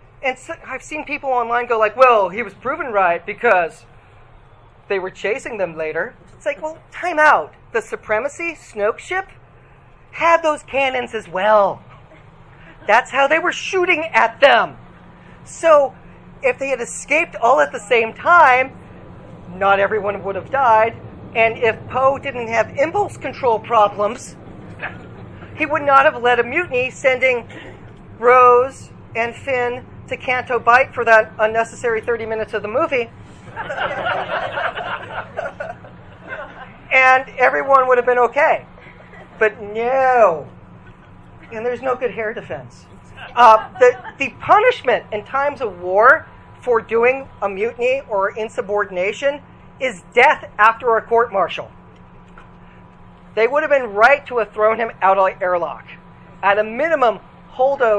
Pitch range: 210-270 Hz